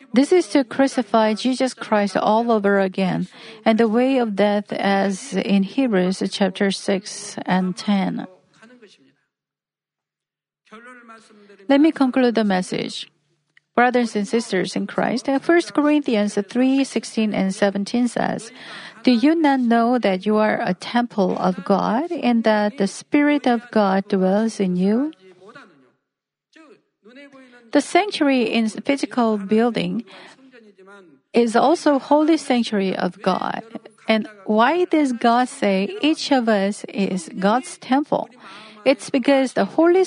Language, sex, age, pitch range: Korean, female, 50-69, 200-260 Hz